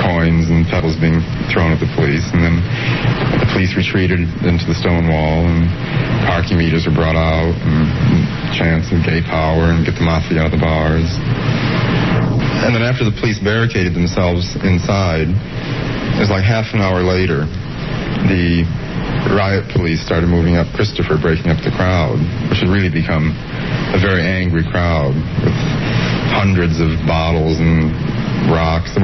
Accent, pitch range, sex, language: American, 80-100 Hz, male, English